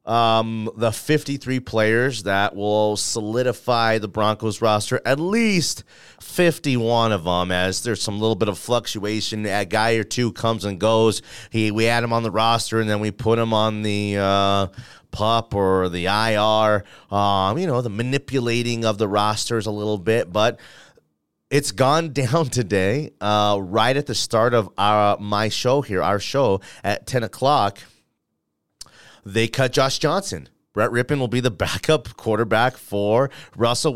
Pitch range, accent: 100-120 Hz, American